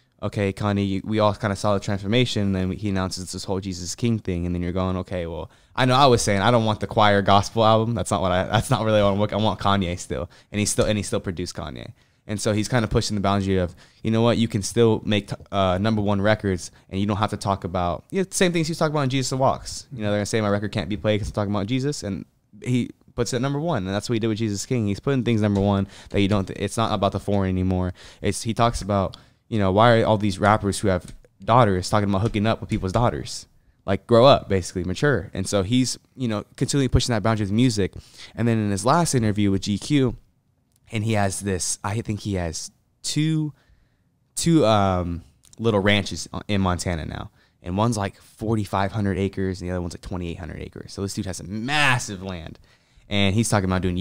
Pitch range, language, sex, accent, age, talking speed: 95-115 Hz, English, male, American, 10-29, 250 wpm